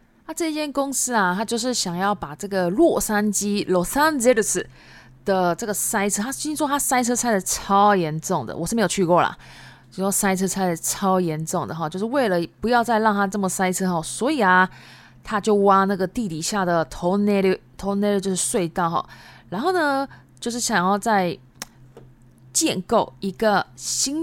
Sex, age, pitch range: female, 20-39, 165-220 Hz